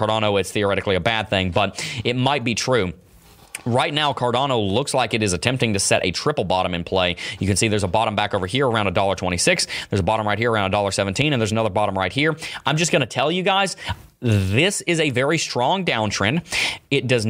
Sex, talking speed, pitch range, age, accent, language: male, 220 wpm, 105-140 Hz, 30-49, American, English